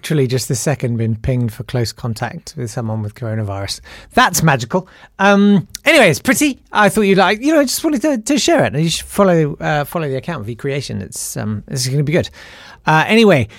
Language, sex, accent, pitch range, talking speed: English, male, British, 120-180 Hz, 215 wpm